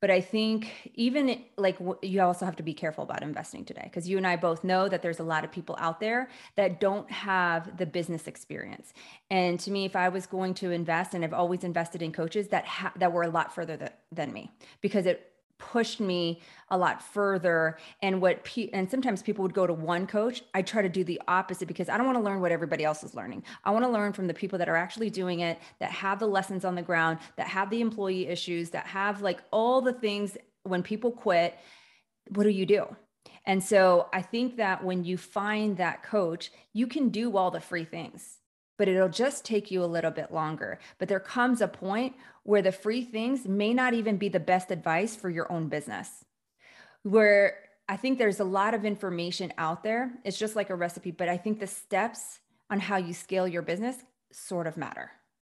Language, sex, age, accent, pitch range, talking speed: English, female, 30-49, American, 175-215 Hz, 225 wpm